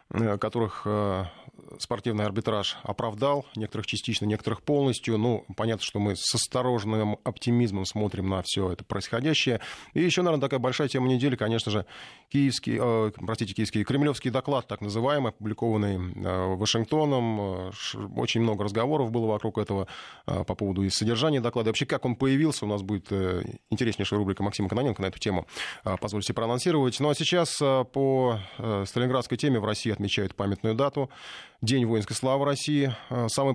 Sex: male